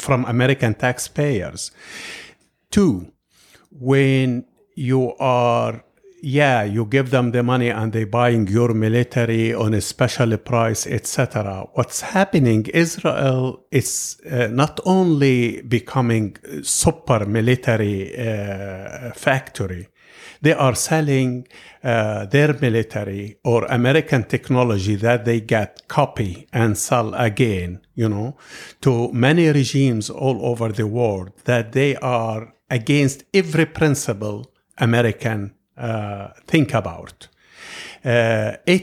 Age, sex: 60-79, male